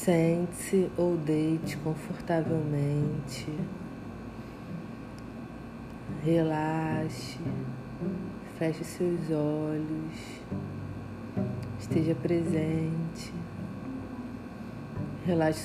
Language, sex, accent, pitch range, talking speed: Portuguese, female, Brazilian, 125-165 Hz, 40 wpm